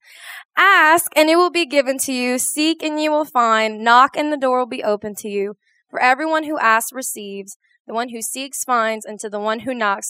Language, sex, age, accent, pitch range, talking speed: English, female, 20-39, American, 225-315 Hz, 225 wpm